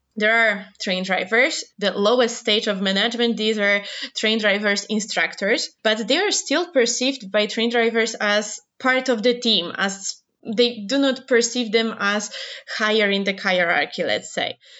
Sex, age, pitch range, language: female, 20-39, 200-235 Hz, English